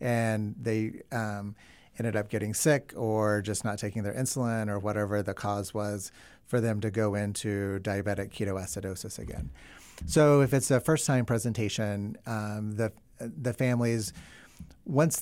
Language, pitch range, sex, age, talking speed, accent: English, 105-120 Hz, male, 30-49, 145 wpm, American